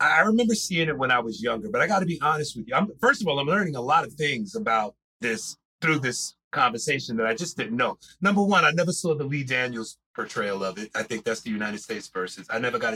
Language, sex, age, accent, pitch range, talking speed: English, male, 30-49, American, 120-150 Hz, 255 wpm